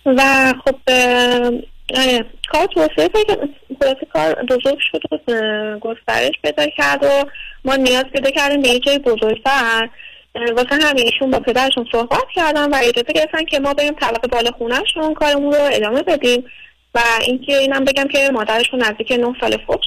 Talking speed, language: 150 wpm, Persian